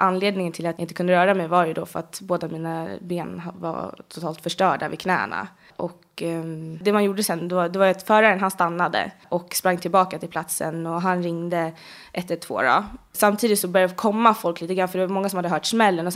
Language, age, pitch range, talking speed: Swedish, 20-39, 175-205 Hz, 225 wpm